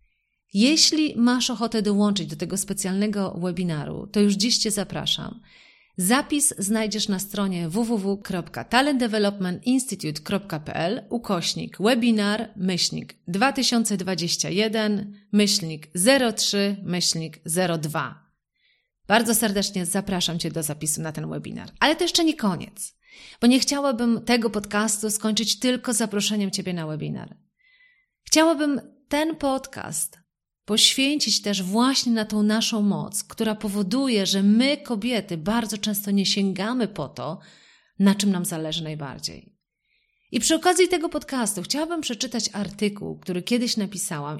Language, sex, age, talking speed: Polish, female, 30-49, 120 wpm